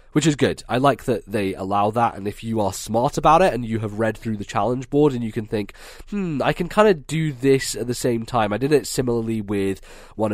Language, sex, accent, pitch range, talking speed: English, male, British, 100-125 Hz, 260 wpm